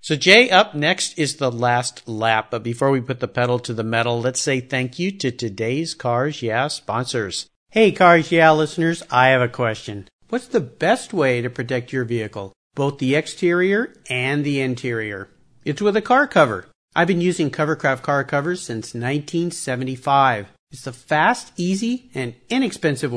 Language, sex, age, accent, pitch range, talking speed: English, male, 50-69, American, 125-175 Hz, 175 wpm